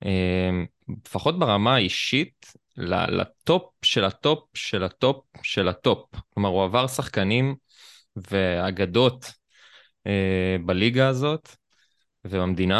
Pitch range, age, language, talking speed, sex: 95-130 Hz, 20-39, Hebrew, 85 wpm, male